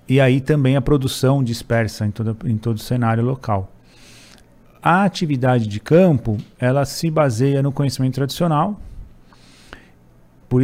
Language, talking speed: Portuguese, 130 wpm